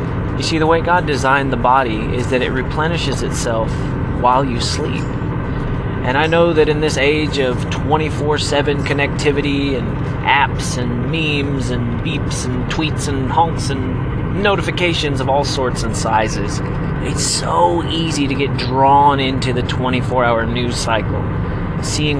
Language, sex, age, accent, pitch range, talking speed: English, male, 30-49, American, 120-145 Hz, 150 wpm